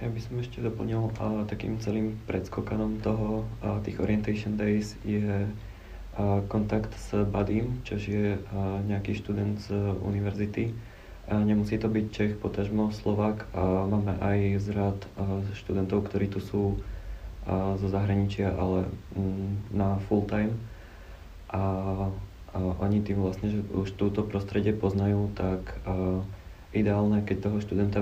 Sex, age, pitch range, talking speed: male, 20-39, 95-105 Hz, 135 wpm